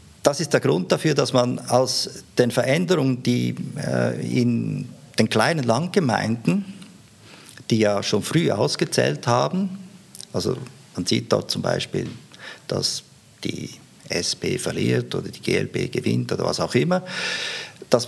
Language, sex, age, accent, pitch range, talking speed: German, male, 50-69, Austrian, 100-130 Hz, 135 wpm